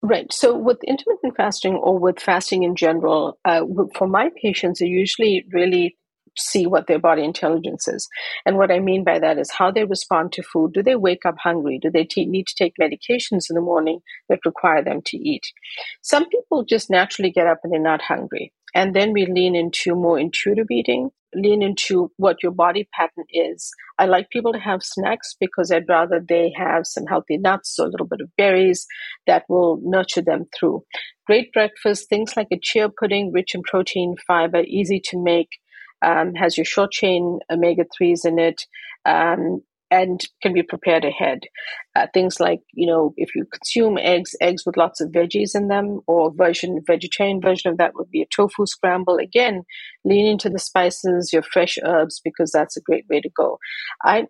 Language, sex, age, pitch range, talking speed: English, female, 50-69, 170-205 Hz, 190 wpm